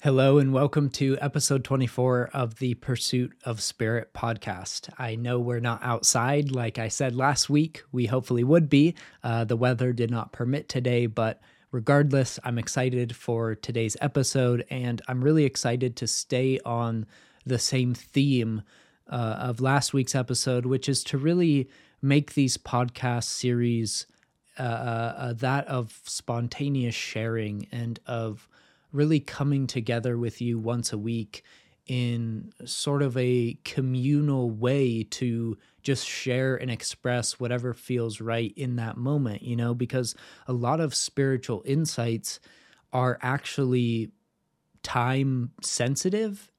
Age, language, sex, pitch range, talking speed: 20-39, English, male, 115-135 Hz, 140 wpm